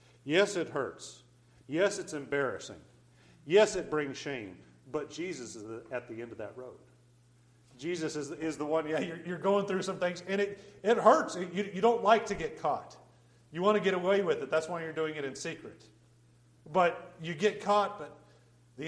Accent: American